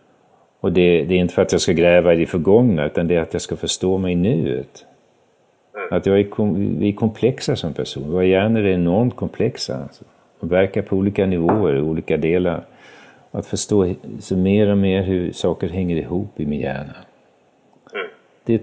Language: Swedish